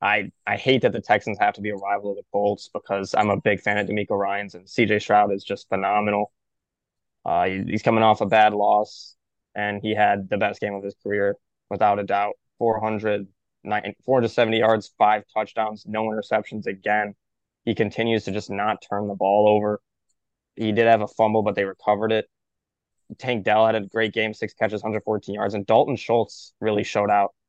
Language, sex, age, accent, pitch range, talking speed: English, male, 20-39, American, 100-110 Hz, 190 wpm